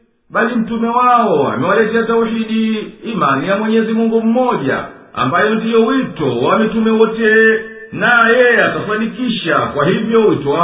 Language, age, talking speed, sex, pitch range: Swahili, 50-69, 125 wpm, male, 205-230 Hz